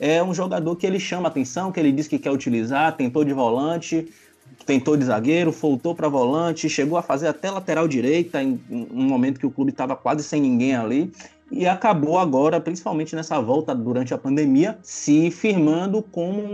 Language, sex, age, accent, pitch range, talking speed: Portuguese, male, 20-39, Brazilian, 135-190 Hz, 185 wpm